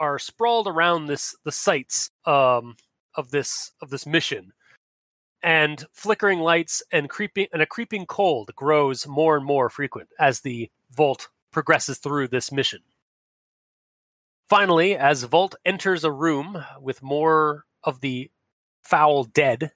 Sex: male